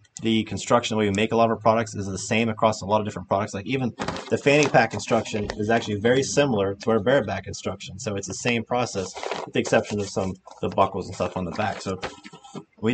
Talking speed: 245 wpm